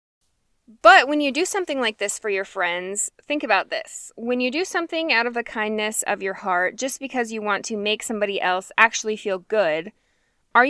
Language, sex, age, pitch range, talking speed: English, female, 20-39, 190-245 Hz, 200 wpm